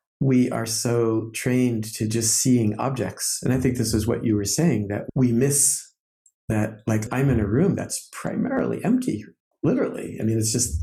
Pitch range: 110-130 Hz